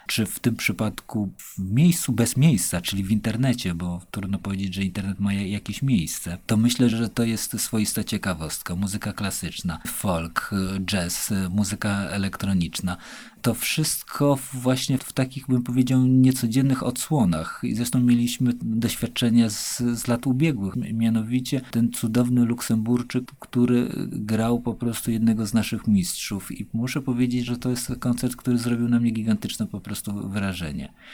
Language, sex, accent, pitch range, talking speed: Polish, male, native, 100-120 Hz, 145 wpm